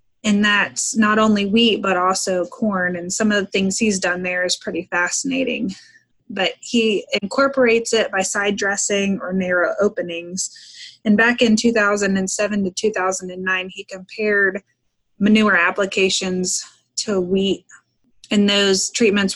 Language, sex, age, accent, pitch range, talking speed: English, female, 20-39, American, 185-220 Hz, 135 wpm